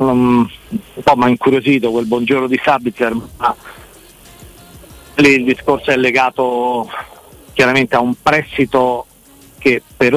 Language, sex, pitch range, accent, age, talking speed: Italian, male, 115-135 Hz, native, 50-69, 130 wpm